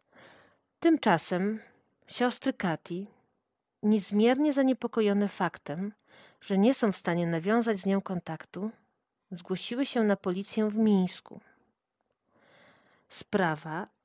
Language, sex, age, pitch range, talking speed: Polish, female, 40-59, 170-215 Hz, 95 wpm